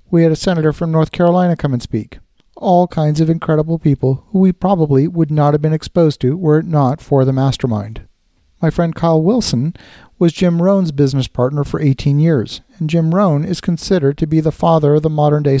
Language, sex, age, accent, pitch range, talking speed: English, male, 50-69, American, 135-165 Hz, 210 wpm